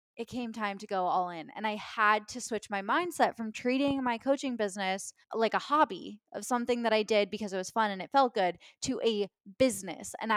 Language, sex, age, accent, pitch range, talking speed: English, female, 10-29, American, 195-235 Hz, 225 wpm